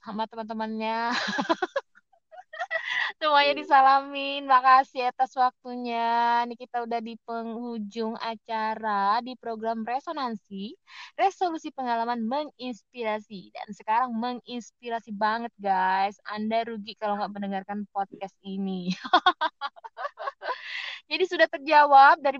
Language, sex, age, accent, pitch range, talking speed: Indonesian, female, 20-39, native, 220-265 Hz, 95 wpm